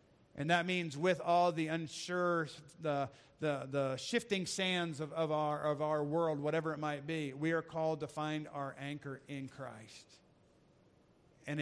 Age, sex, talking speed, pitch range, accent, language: 50-69, male, 165 wpm, 140-180 Hz, American, English